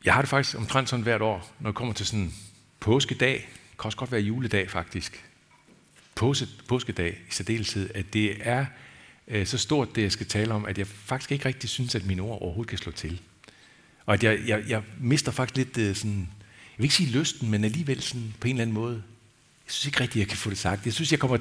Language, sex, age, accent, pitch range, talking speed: Danish, male, 60-79, native, 100-130 Hz, 235 wpm